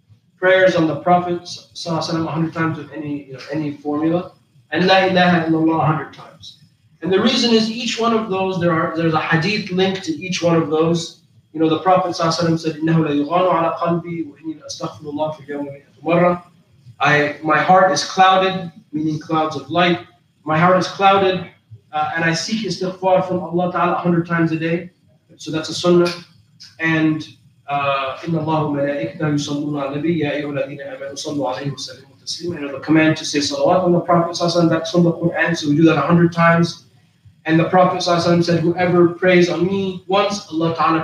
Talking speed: 180 wpm